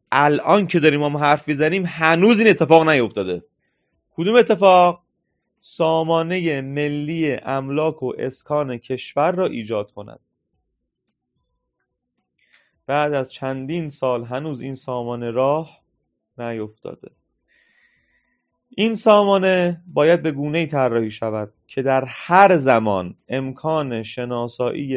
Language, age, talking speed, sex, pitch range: Persian, 30-49, 105 wpm, male, 125-155 Hz